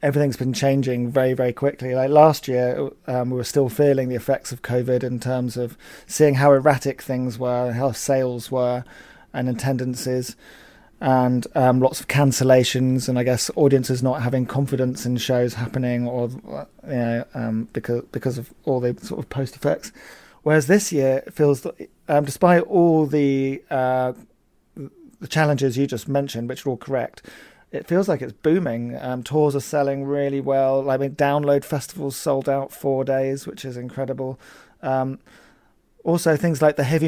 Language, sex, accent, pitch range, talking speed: English, male, British, 125-145 Hz, 175 wpm